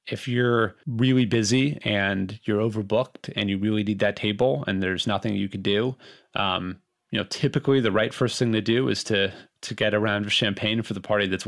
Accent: American